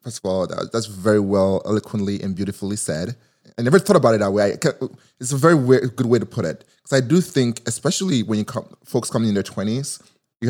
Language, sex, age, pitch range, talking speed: English, male, 20-39, 105-130 Hz, 210 wpm